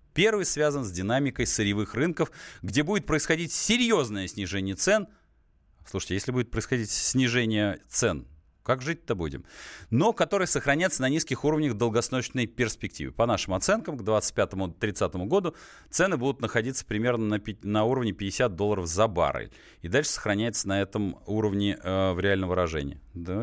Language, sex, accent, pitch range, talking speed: Russian, male, native, 95-120 Hz, 150 wpm